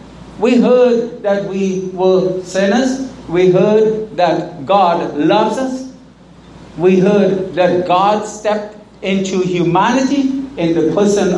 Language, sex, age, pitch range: English, male, 60-79, 165-225 Hz